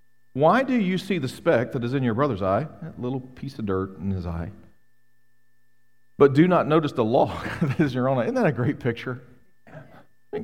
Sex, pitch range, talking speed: male, 120-180 Hz, 220 wpm